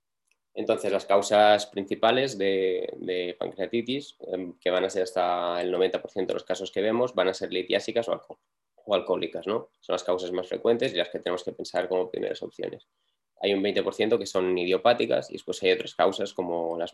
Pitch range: 90-105 Hz